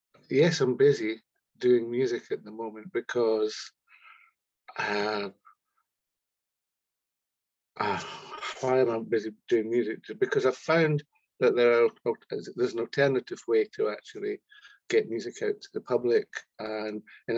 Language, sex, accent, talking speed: English, male, British, 130 wpm